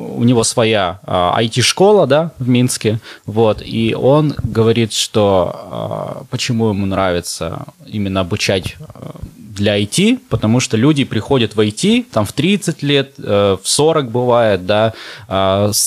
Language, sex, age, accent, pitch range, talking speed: Russian, male, 20-39, native, 95-120 Hz, 130 wpm